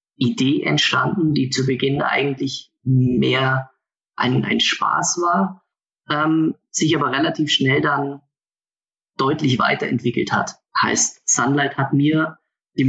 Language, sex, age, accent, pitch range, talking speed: German, male, 30-49, German, 135-160 Hz, 115 wpm